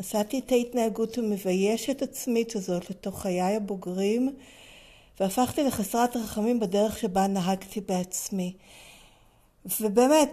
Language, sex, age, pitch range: Hebrew, female, 50-69, 205-270 Hz